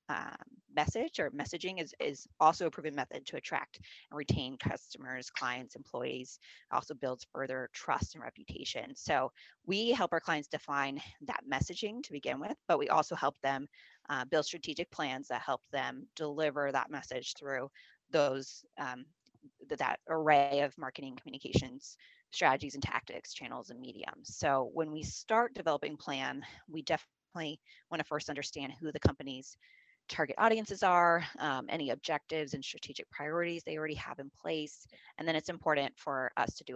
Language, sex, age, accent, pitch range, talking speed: English, female, 20-39, American, 135-165 Hz, 165 wpm